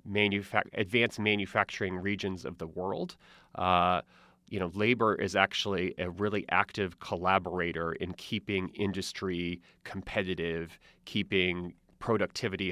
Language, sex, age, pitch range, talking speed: English, male, 30-49, 90-110 Hz, 105 wpm